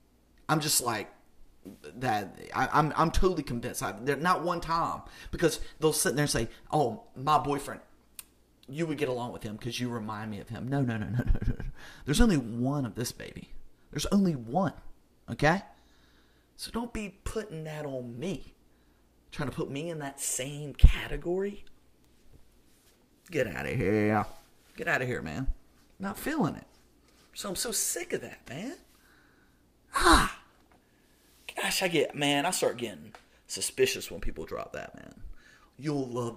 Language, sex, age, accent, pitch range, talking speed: English, male, 40-59, American, 105-150 Hz, 160 wpm